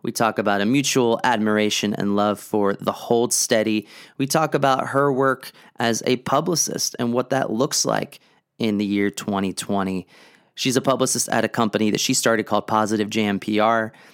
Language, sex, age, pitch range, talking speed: English, male, 30-49, 105-130 Hz, 175 wpm